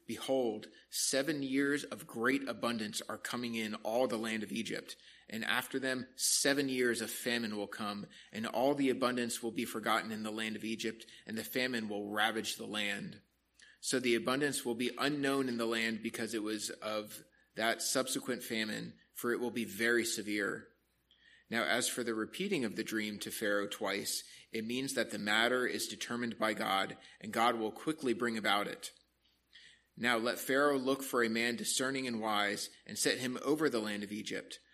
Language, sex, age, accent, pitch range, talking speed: English, male, 30-49, American, 110-130 Hz, 190 wpm